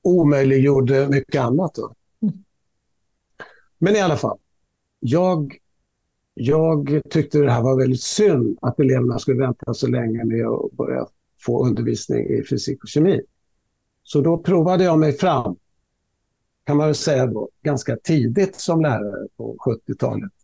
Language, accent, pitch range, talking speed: Swedish, native, 125-155 Hz, 140 wpm